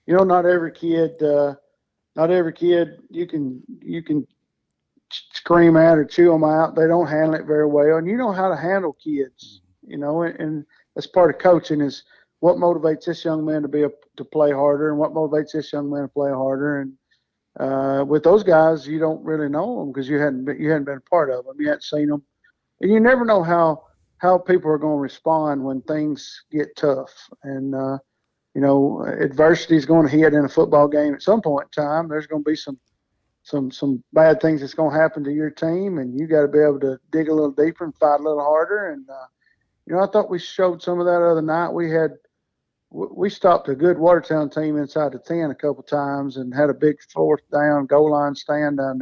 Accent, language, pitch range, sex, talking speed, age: American, English, 140-165 Hz, male, 230 wpm, 50-69